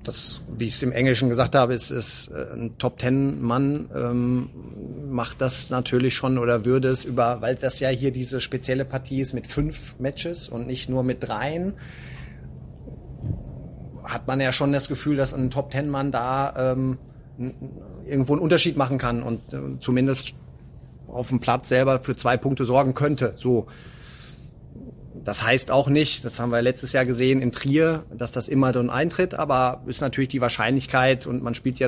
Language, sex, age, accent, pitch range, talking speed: German, male, 30-49, German, 125-140 Hz, 175 wpm